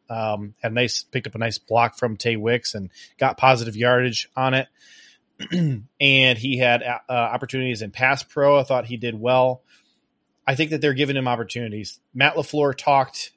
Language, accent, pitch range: English, American, 115-135 Hz